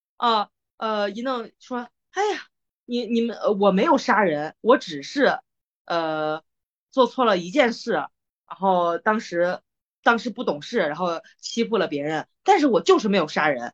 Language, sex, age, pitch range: Chinese, female, 20-39, 180-265 Hz